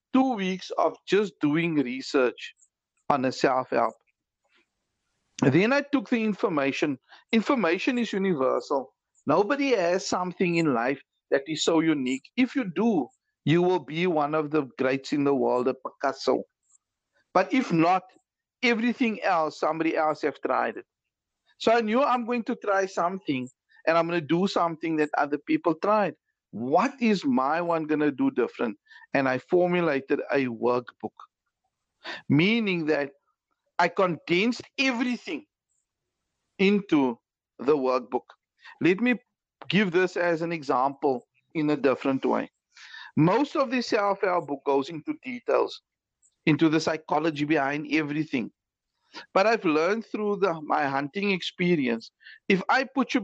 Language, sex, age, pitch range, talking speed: English, male, 50-69, 150-235 Hz, 140 wpm